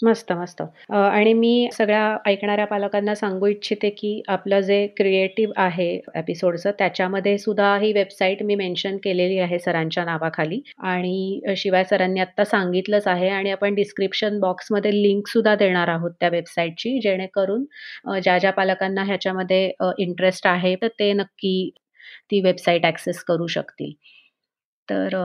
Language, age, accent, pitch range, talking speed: Marathi, 30-49, native, 185-215 Hz, 125 wpm